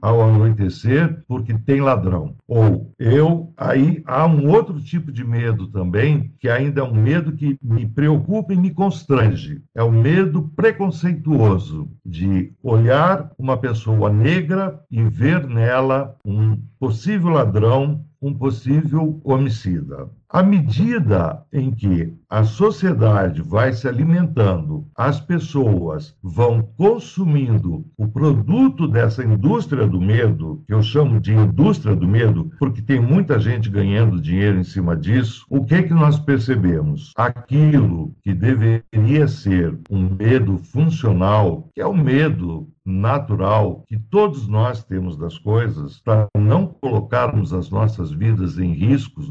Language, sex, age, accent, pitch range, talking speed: Portuguese, male, 60-79, Brazilian, 105-145 Hz, 135 wpm